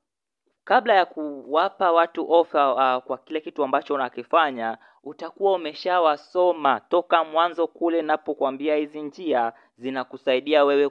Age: 20-39